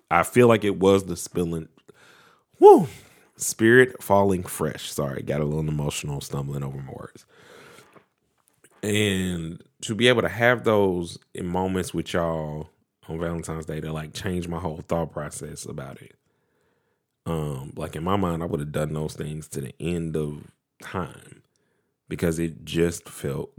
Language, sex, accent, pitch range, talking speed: English, male, American, 80-105 Hz, 160 wpm